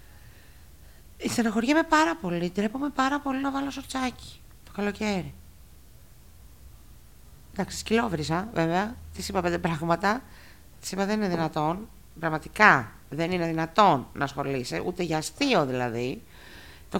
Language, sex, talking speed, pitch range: Greek, female, 120 wpm, 140-230 Hz